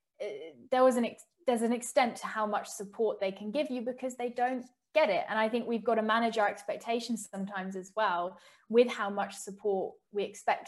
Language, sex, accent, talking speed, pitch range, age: English, female, British, 210 wpm, 195-240 Hz, 10-29